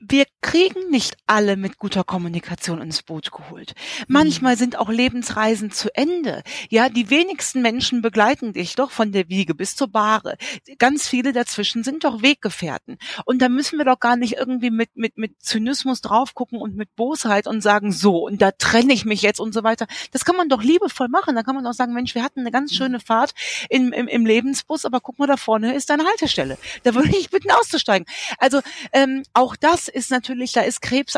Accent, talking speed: German, 210 wpm